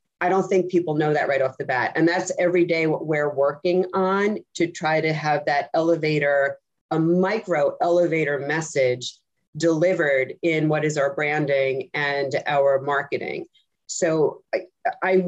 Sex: female